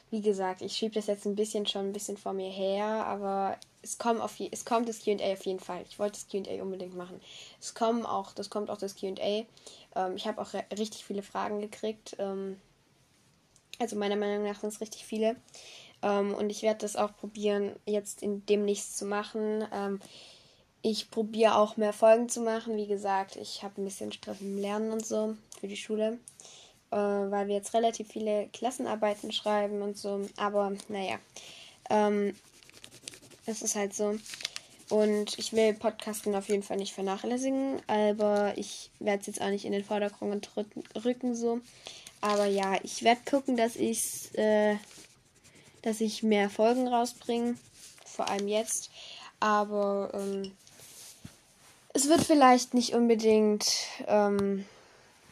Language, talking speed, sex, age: German, 165 wpm, female, 10-29